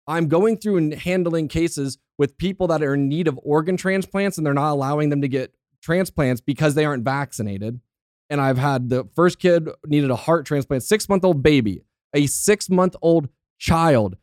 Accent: American